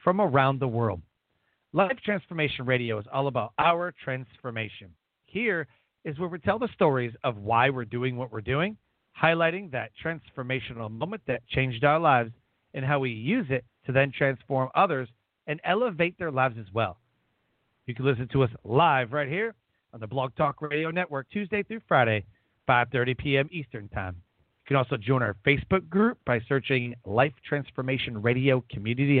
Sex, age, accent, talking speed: male, 40-59, American, 170 wpm